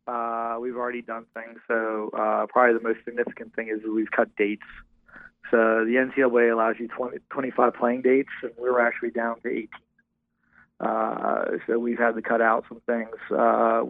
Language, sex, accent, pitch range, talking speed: English, male, American, 110-120 Hz, 180 wpm